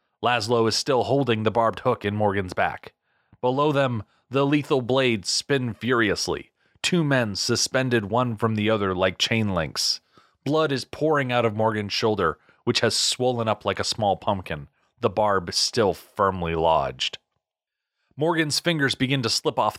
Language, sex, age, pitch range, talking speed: English, male, 30-49, 105-135 Hz, 160 wpm